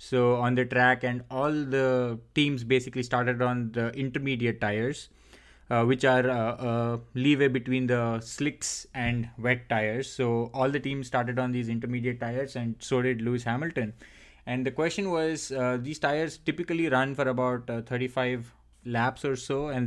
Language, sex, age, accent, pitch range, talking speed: English, male, 20-39, Indian, 125-140 Hz, 170 wpm